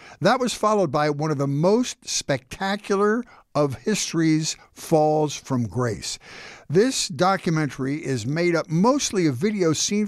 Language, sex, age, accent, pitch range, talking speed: English, male, 60-79, American, 125-170 Hz, 135 wpm